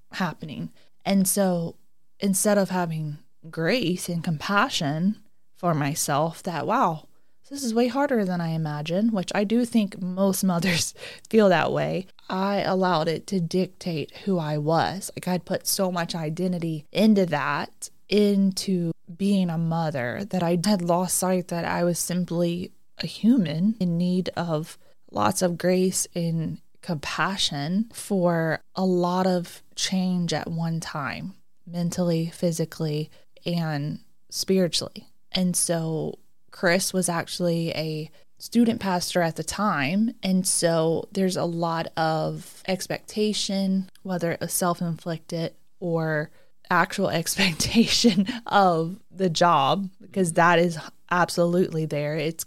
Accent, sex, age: American, female, 20-39